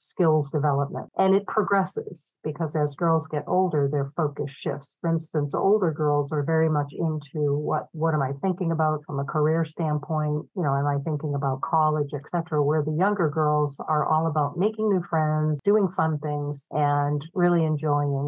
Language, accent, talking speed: English, American, 180 wpm